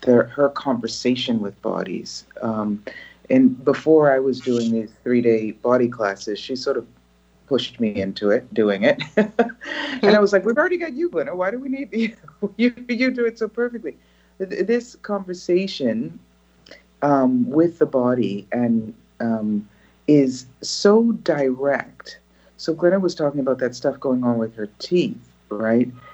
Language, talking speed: English, 155 wpm